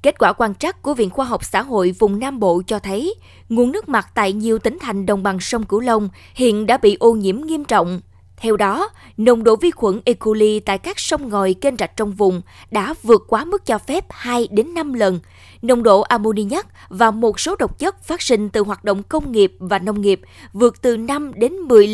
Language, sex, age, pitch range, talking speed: Vietnamese, female, 20-39, 200-255 Hz, 215 wpm